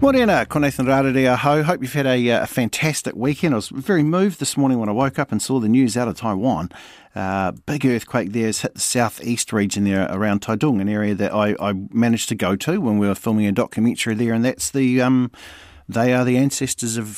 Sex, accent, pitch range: male, Australian, 95-130 Hz